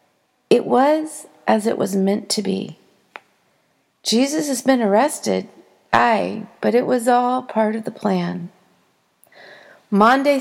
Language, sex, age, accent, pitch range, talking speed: English, female, 40-59, American, 195-265 Hz, 125 wpm